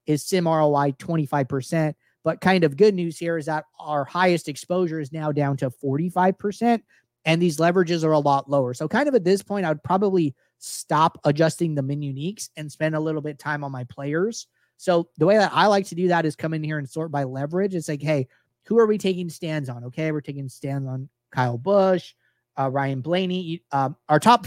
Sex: male